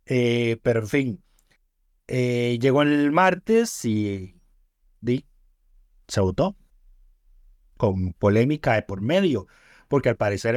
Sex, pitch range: male, 105-150 Hz